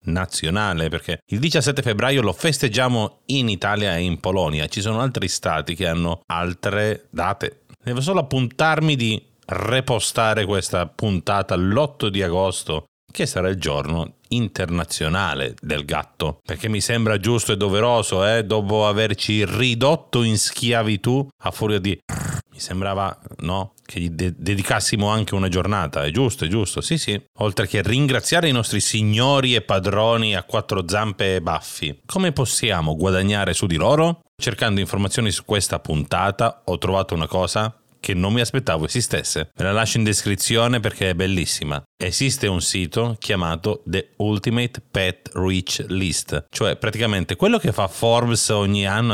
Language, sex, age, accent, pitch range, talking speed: Italian, male, 40-59, native, 95-115 Hz, 155 wpm